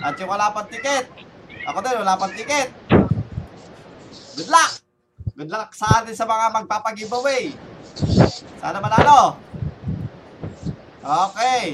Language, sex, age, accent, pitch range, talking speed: Filipino, male, 20-39, native, 185-245 Hz, 105 wpm